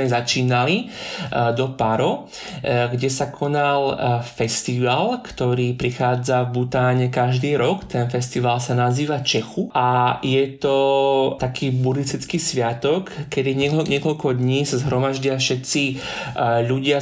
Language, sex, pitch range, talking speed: Slovak, male, 130-160 Hz, 110 wpm